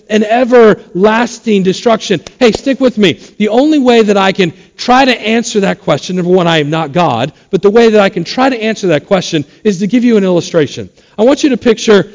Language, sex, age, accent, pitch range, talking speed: English, male, 50-69, American, 180-215 Hz, 225 wpm